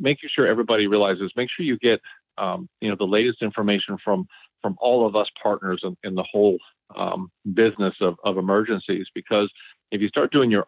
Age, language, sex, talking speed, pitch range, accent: 40-59, English, male, 195 wpm, 95-110 Hz, American